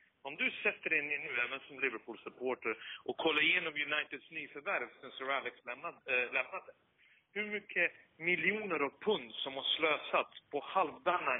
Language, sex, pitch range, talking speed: Swedish, male, 140-195 Hz, 155 wpm